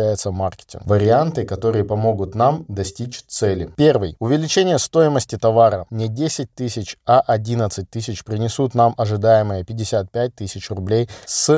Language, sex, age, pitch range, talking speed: Russian, male, 20-39, 105-125 Hz, 120 wpm